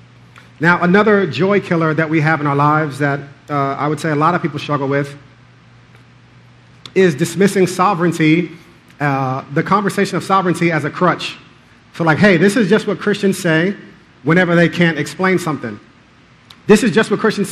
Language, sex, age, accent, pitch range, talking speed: English, male, 40-59, American, 150-185 Hz, 175 wpm